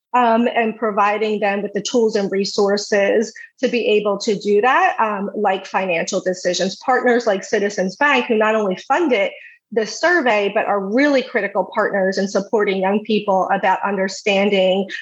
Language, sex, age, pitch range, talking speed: English, female, 30-49, 190-230 Hz, 160 wpm